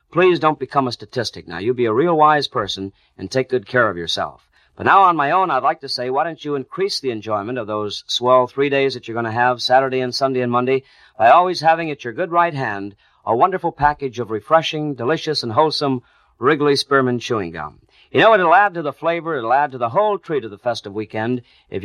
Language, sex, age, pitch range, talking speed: English, male, 50-69, 115-160 Hz, 235 wpm